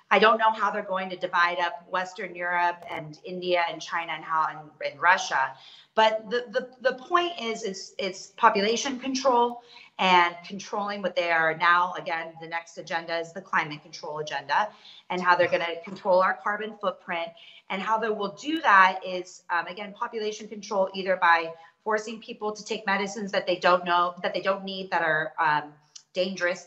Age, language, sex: 30-49, English, female